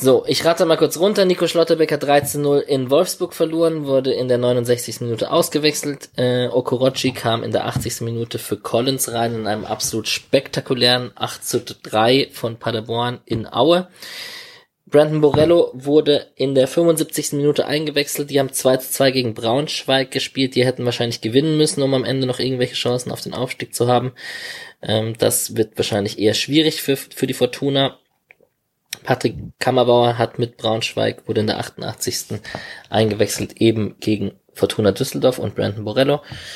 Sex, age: male, 20-39